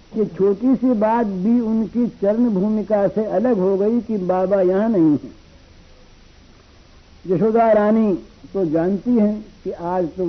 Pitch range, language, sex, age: 170-230 Hz, Hindi, female, 60-79